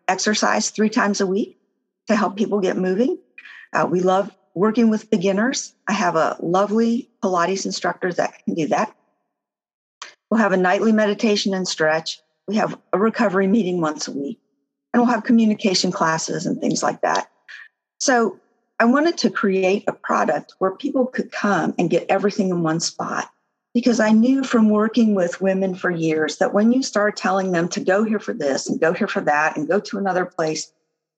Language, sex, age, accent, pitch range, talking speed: English, female, 50-69, American, 175-225 Hz, 185 wpm